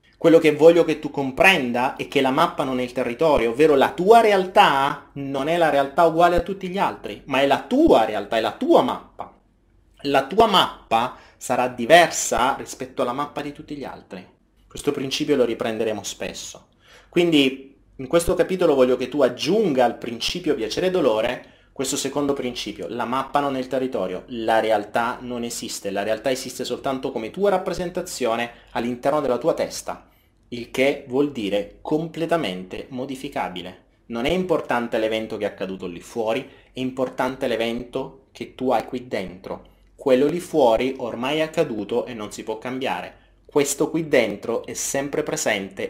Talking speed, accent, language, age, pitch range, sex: 170 wpm, native, Italian, 30-49, 120-155 Hz, male